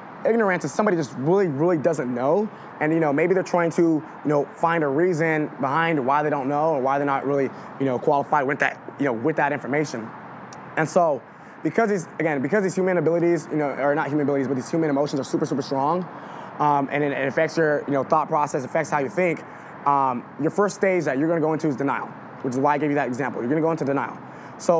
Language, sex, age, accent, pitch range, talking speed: English, male, 20-39, American, 140-170 Hz, 250 wpm